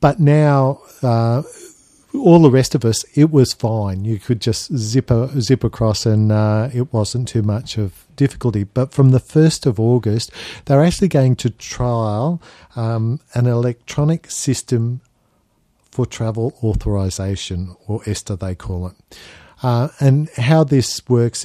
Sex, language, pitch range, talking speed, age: male, English, 105-130 Hz, 150 wpm, 50-69